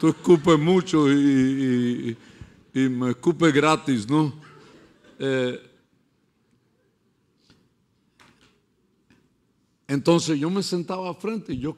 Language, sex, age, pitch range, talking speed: English, male, 60-79, 130-170 Hz, 85 wpm